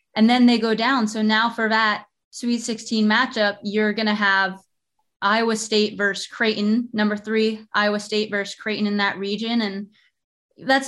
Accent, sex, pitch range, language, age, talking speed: American, female, 210-235 Hz, English, 20-39, 170 wpm